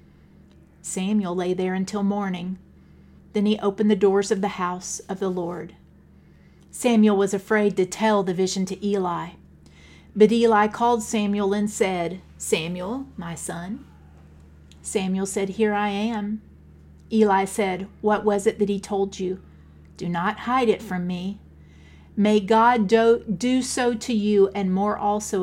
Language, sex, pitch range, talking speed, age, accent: English, female, 170-210 Hz, 150 wpm, 40-59, American